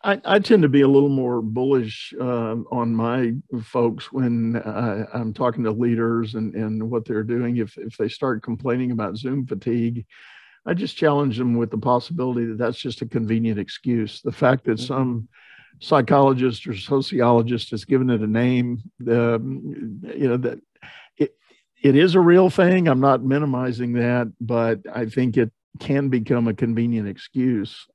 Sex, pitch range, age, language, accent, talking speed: male, 115-130 Hz, 50-69, English, American, 170 wpm